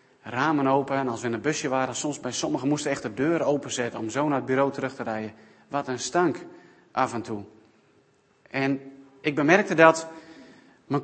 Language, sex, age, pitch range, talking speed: Dutch, male, 40-59, 130-180 Hz, 190 wpm